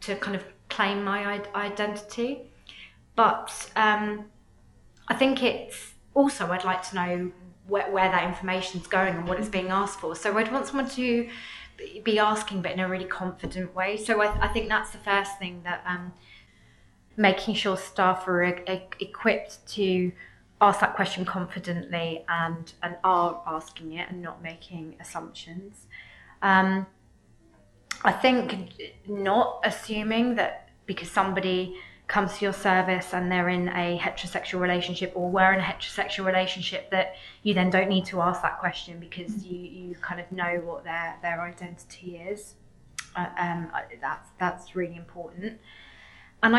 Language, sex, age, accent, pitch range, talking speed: English, female, 20-39, British, 180-210 Hz, 160 wpm